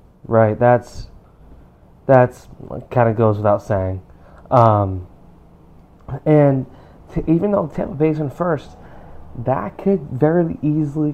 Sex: male